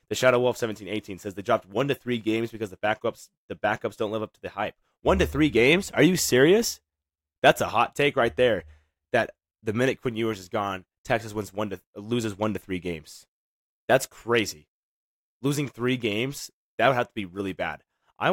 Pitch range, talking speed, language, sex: 85-110 Hz, 210 wpm, English, male